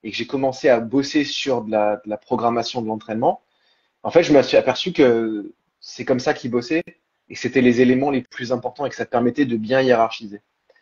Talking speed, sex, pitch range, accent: 235 wpm, male, 110-145 Hz, French